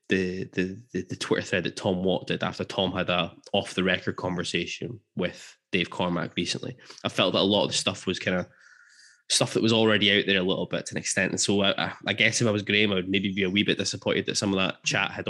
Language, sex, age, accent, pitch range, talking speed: English, male, 10-29, British, 90-110 Hz, 255 wpm